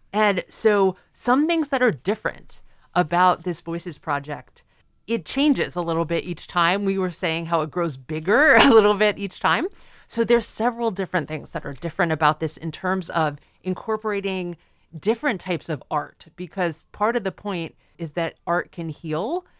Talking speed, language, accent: 180 wpm, English, American